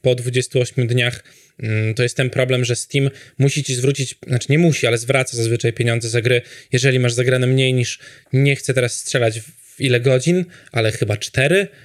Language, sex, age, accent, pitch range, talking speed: Polish, male, 20-39, native, 120-140 Hz, 180 wpm